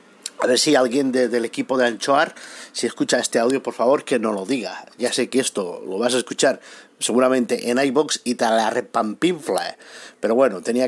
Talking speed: 210 wpm